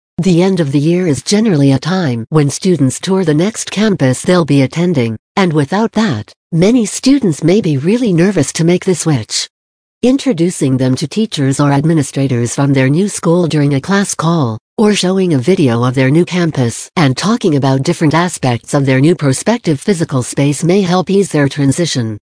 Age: 60-79